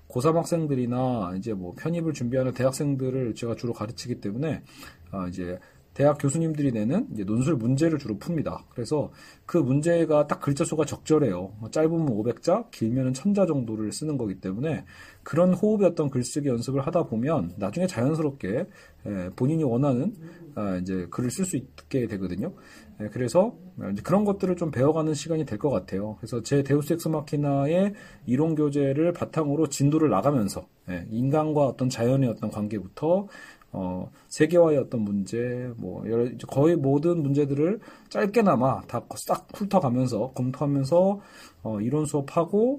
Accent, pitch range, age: native, 115-160 Hz, 40-59